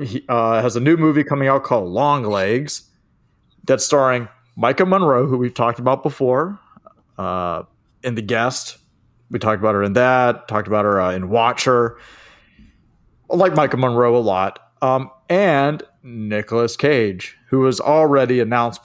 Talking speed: 160 wpm